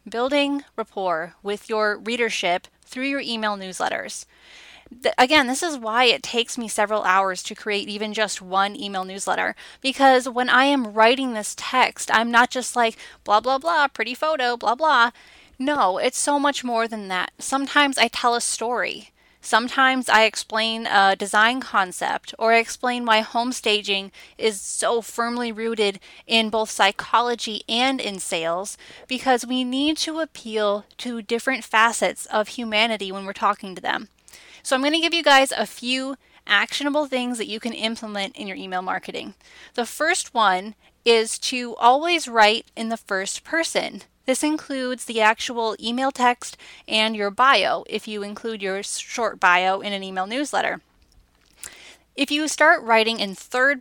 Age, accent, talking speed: 10-29, American, 165 wpm